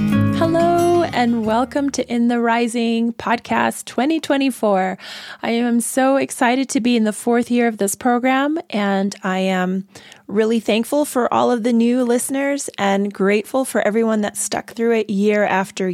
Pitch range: 195-240 Hz